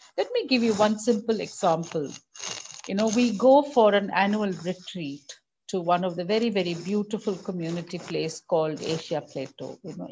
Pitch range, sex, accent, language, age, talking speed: 180-230 Hz, female, Indian, English, 50-69, 170 wpm